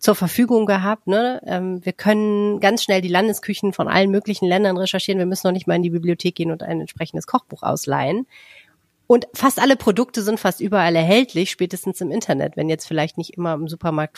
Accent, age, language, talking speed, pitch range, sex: German, 30-49, German, 200 wpm, 160-205 Hz, female